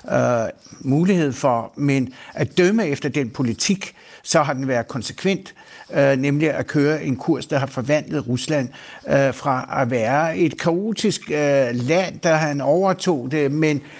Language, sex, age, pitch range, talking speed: Danish, male, 60-79, 140-165 Hz, 140 wpm